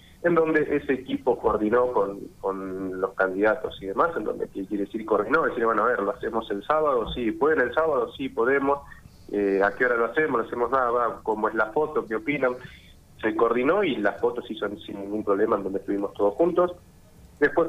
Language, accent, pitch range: Spanish, Argentinian, 100-125 Hz